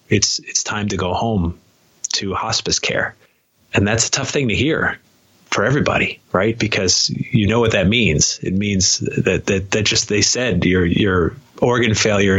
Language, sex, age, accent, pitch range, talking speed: English, male, 30-49, American, 95-110 Hz, 180 wpm